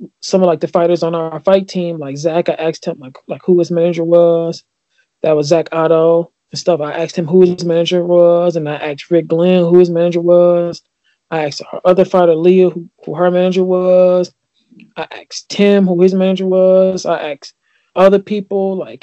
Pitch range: 160-185 Hz